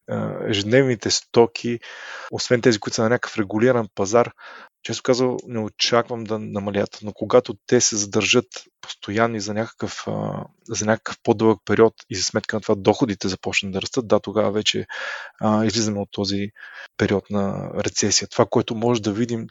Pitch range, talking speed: 105-120 Hz, 155 wpm